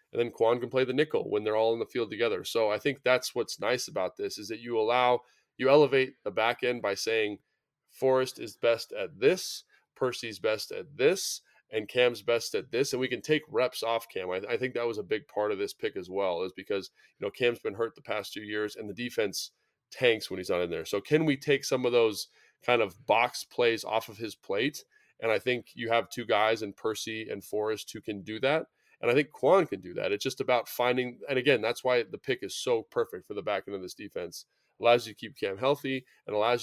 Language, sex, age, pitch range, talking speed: English, male, 20-39, 110-185 Hz, 250 wpm